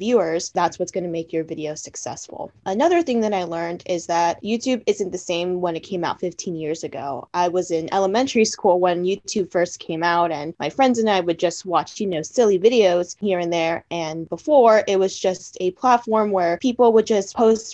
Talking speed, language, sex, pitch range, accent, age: 215 wpm, English, female, 175-220 Hz, American, 20-39